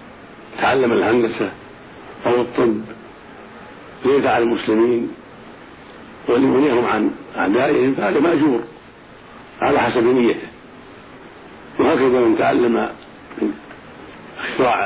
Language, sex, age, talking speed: Arabic, male, 60-79, 75 wpm